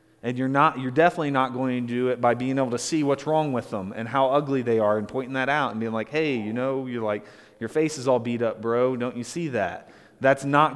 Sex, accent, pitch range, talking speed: male, American, 130-155 Hz, 275 wpm